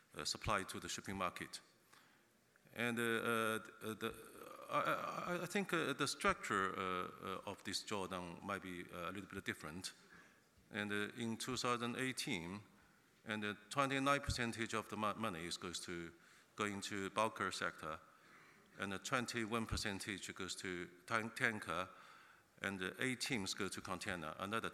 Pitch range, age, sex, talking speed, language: 90-115 Hz, 50-69, male, 145 wpm, English